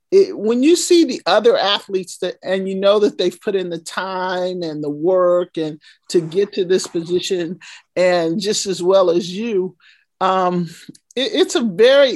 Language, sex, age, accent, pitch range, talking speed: English, male, 50-69, American, 185-235 Hz, 185 wpm